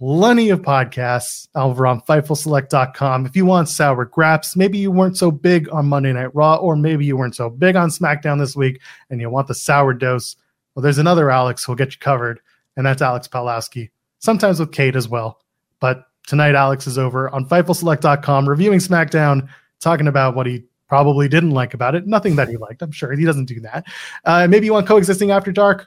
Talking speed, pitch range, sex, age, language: 205 wpm, 130-170 Hz, male, 30-49, English